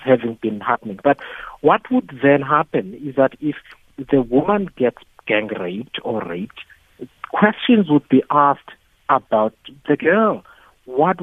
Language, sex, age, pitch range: English, male, 50-69, 120-160 Hz